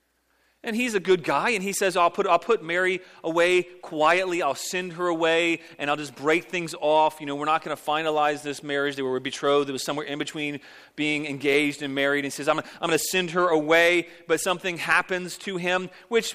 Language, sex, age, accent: English, male, 30-49, American